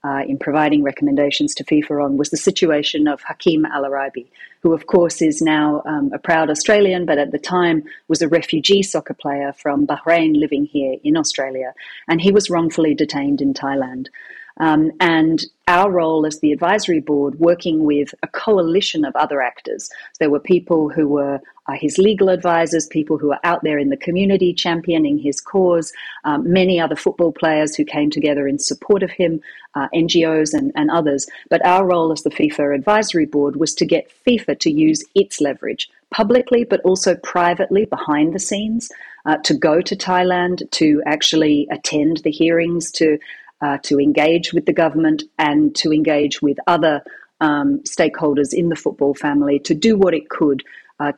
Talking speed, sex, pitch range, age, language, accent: 180 wpm, female, 145-175 Hz, 40-59, English, Australian